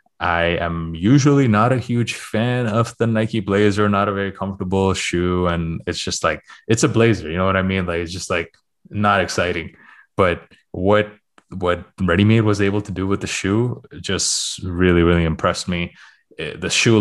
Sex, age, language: male, 20-39, English